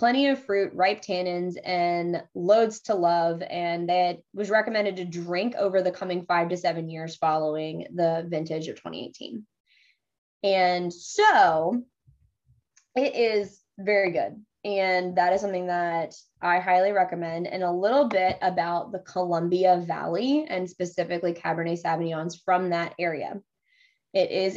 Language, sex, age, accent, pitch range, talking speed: English, female, 20-39, American, 180-230 Hz, 140 wpm